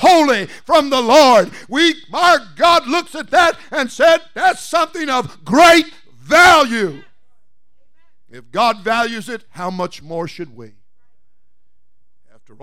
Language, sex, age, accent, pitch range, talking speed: English, male, 50-69, American, 145-195 Hz, 130 wpm